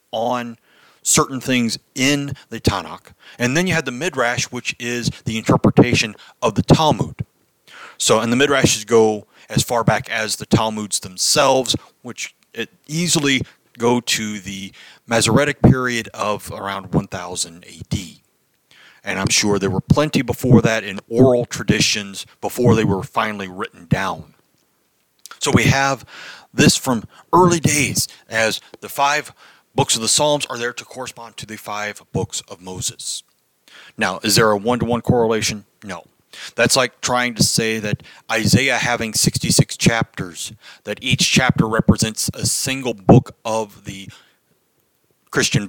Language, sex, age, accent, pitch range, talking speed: English, male, 40-59, American, 110-135 Hz, 145 wpm